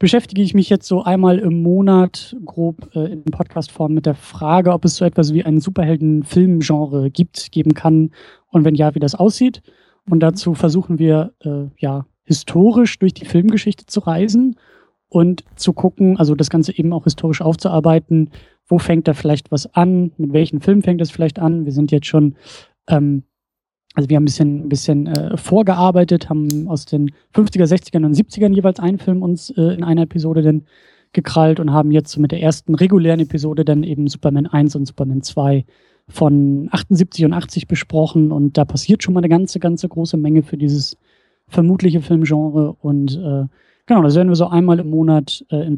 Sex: male